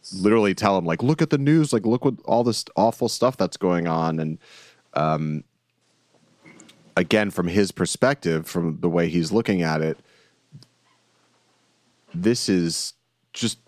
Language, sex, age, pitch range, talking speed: English, male, 30-49, 80-100 Hz, 150 wpm